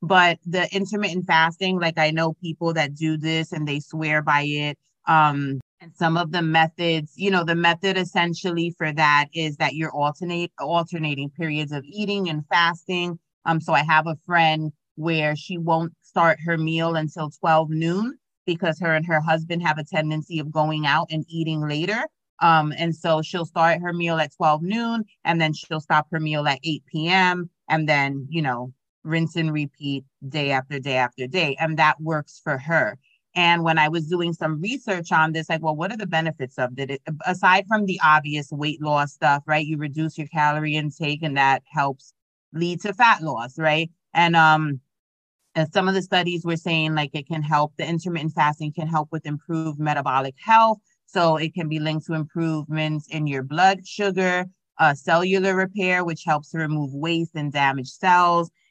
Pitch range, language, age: 150-170 Hz, English, 30-49